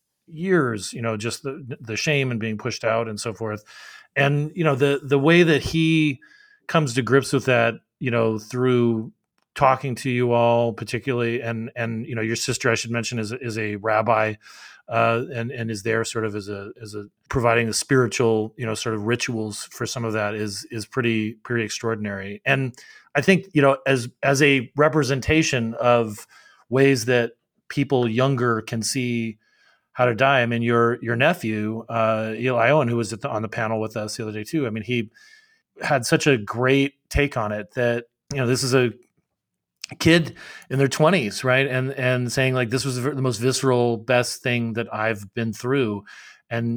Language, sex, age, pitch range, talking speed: English, male, 30-49, 115-135 Hz, 195 wpm